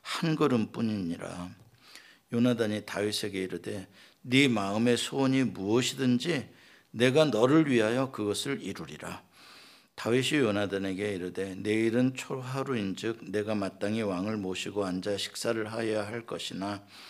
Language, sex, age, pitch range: Korean, male, 50-69, 100-130 Hz